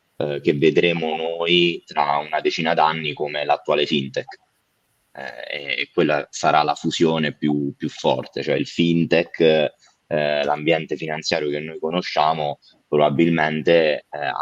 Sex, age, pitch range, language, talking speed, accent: male, 20-39, 75-90 Hz, Italian, 125 wpm, native